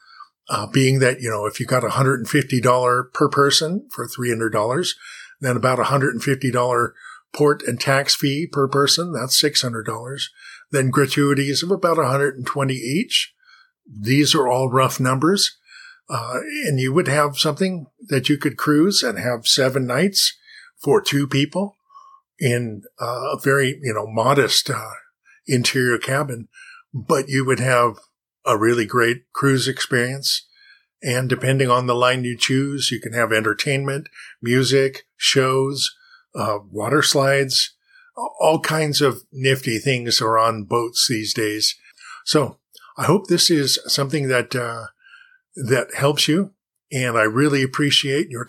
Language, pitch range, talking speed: English, 125-150 Hz, 140 wpm